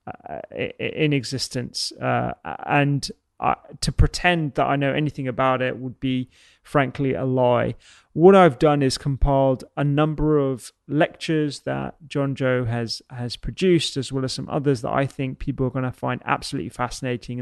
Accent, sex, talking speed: British, male, 170 wpm